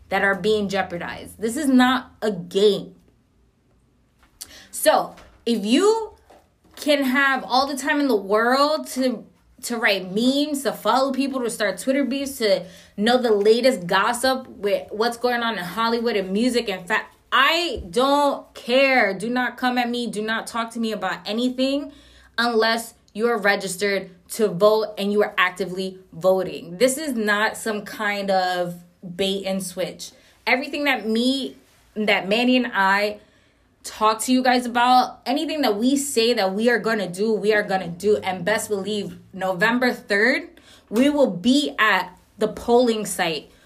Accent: American